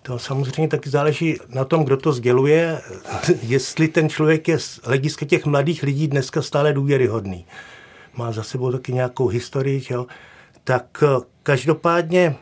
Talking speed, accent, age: 135 wpm, native, 50-69